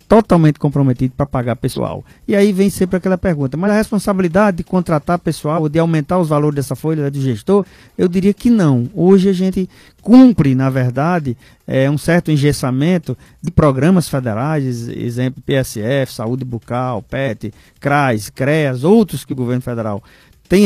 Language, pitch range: Portuguese, 130-195 Hz